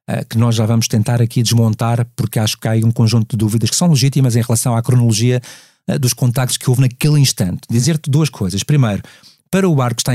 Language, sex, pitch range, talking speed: Portuguese, male, 120-150 Hz, 215 wpm